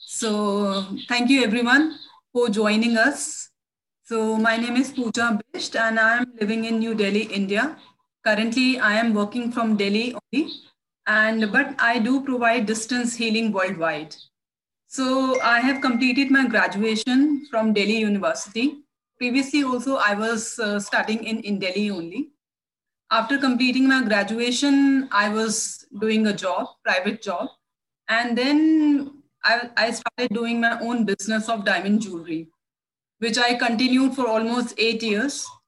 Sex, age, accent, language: female, 30-49, Indian, English